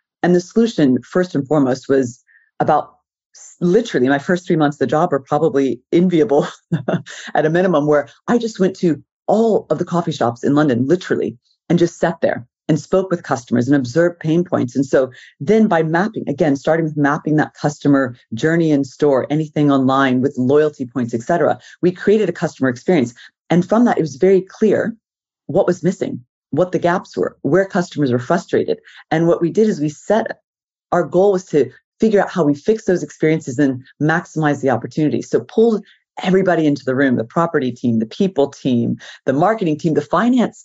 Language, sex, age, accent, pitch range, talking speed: English, female, 40-59, American, 140-185 Hz, 195 wpm